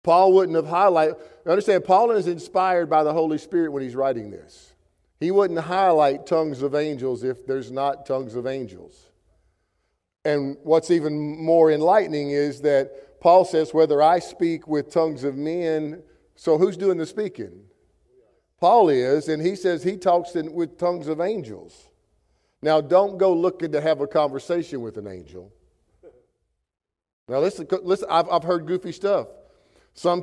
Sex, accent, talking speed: male, American, 155 wpm